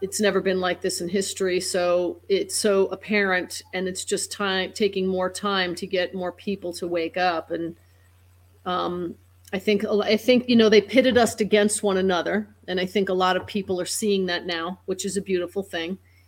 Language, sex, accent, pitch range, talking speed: English, female, American, 170-195 Hz, 195 wpm